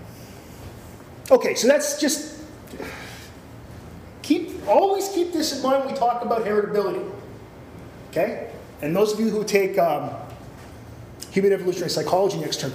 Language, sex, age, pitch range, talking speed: English, male, 30-49, 165-255 Hz, 130 wpm